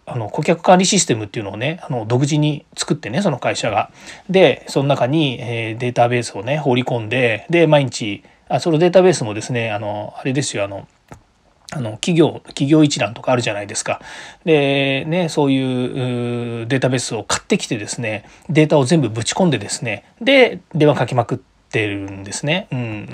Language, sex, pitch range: Japanese, male, 120-160 Hz